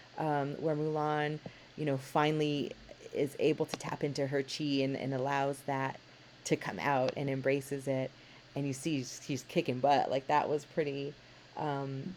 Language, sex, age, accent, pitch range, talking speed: English, female, 30-49, American, 145-175 Hz, 170 wpm